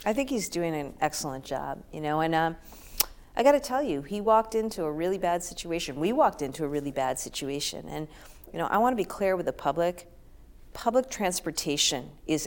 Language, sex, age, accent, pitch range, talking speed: English, female, 40-59, American, 145-185 Hz, 210 wpm